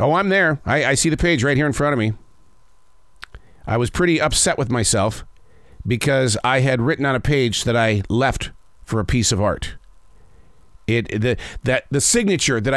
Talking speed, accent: 195 wpm, American